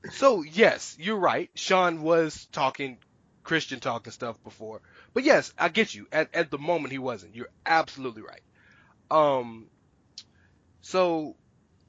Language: English